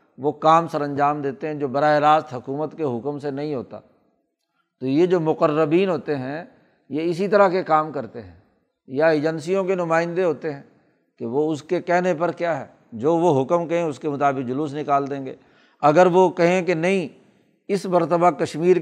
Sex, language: male, Urdu